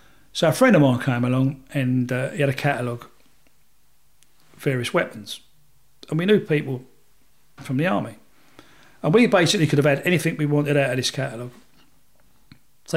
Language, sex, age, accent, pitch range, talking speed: English, male, 40-59, British, 130-155 Hz, 170 wpm